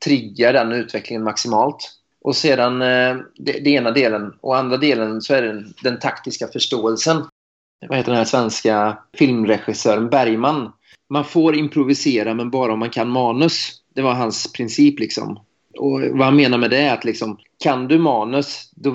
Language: Swedish